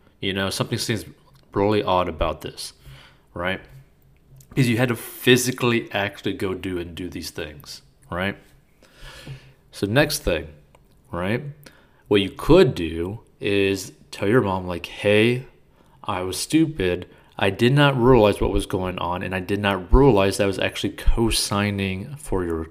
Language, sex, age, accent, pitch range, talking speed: English, male, 30-49, American, 90-120 Hz, 155 wpm